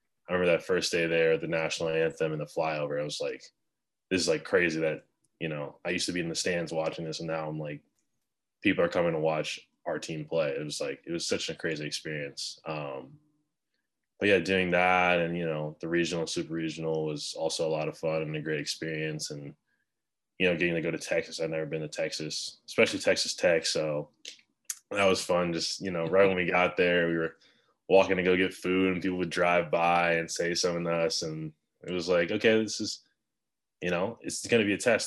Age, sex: 20-39, male